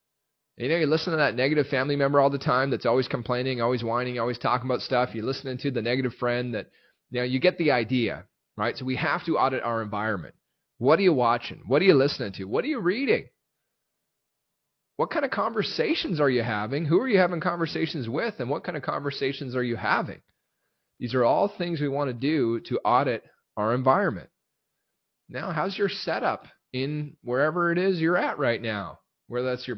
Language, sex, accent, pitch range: English, male, American, 120-155 Hz